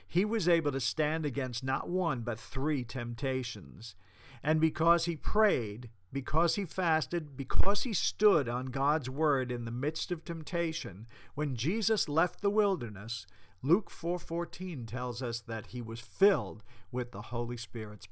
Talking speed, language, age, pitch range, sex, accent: 150 wpm, English, 50-69, 115-160 Hz, male, American